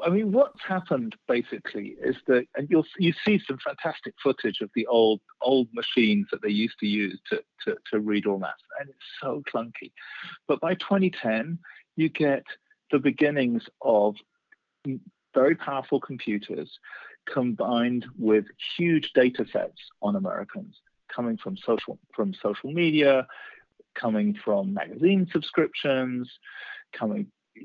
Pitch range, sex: 125-210 Hz, male